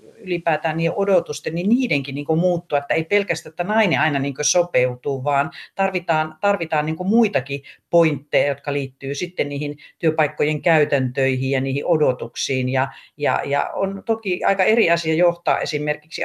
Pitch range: 140-170 Hz